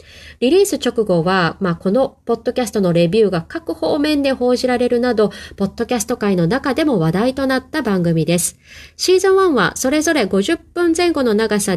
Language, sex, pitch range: Japanese, female, 190-285 Hz